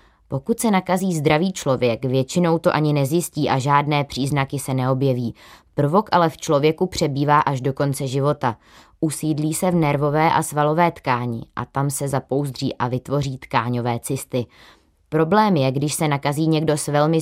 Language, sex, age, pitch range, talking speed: Czech, female, 20-39, 130-155 Hz, 160 wpm